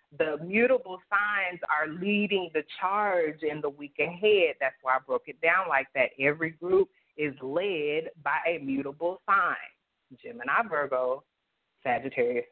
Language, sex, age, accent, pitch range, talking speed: English, female, 30-49, American, 155-220 Hz, 145 wpm